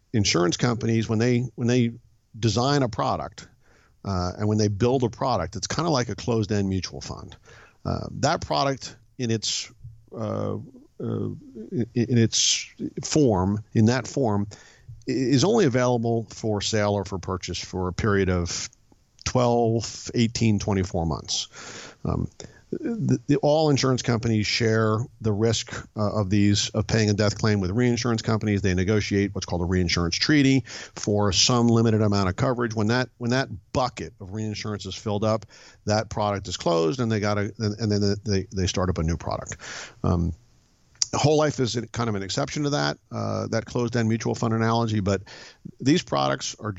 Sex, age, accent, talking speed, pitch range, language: male, 50-69, American, 175 wpm, 100-120 Hz, English